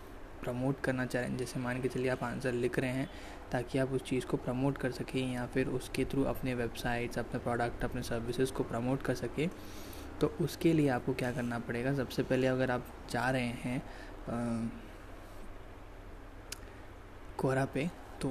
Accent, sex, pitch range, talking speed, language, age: native, male, 120-140 Hz, 165 wpm, Hindi, 20-39